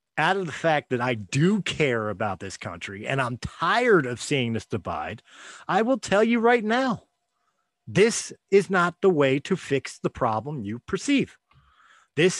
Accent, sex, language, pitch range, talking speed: American, male, English, 135-190 Hz, 175 wpm